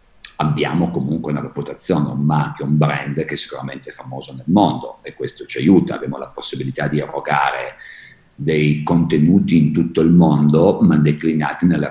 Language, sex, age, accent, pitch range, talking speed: Italian, male, 50-69, native, 70-85 Hz, 165 wpm